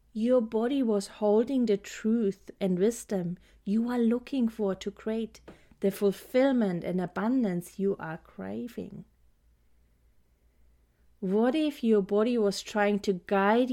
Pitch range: 175-225 Hz